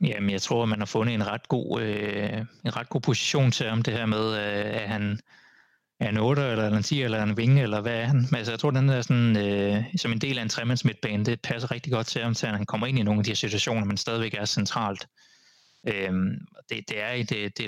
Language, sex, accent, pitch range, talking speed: Danish, male, native, 110-145 Hz, 265 wpm